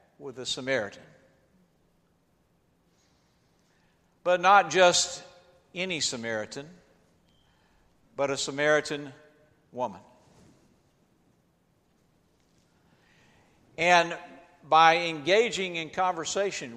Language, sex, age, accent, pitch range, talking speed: English, male, 60-79, American, 140-185 Hz, 60 wpm